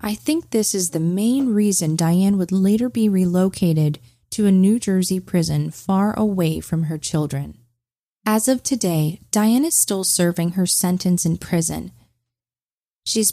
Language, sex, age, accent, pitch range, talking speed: English, female, 20-39, American, 165-225 Hz, 155 wpm